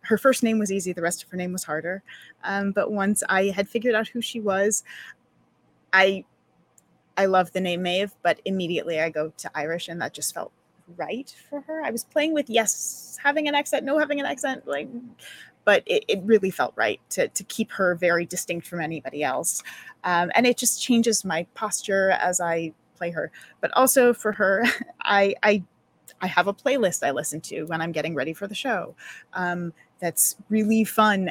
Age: 30-49